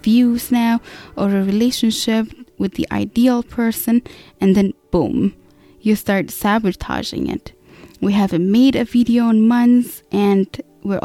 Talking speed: 135 wpm